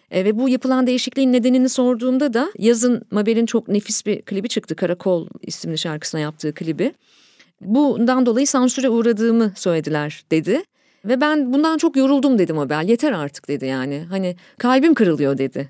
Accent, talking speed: native, 155 wpm